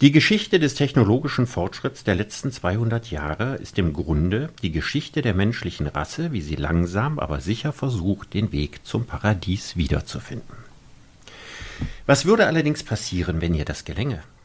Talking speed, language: 150 wpm, German